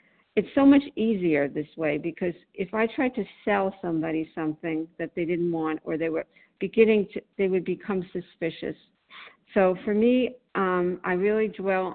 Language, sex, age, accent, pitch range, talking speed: English, female, 50-69, American, 165-195 Hz, 170 wpm